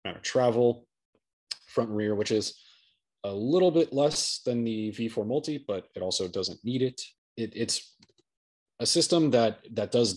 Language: English